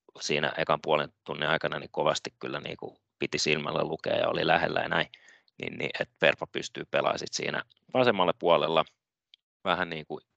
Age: 30-49